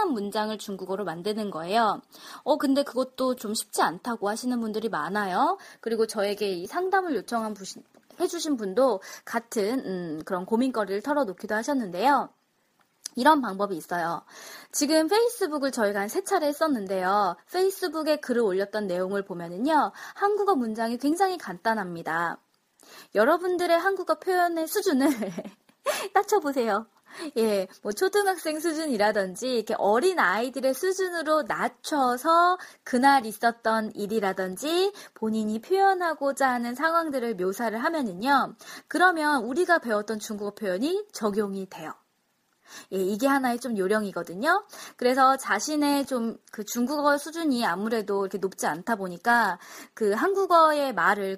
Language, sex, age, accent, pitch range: Korean, female, 20-39, native, 205-315 Hz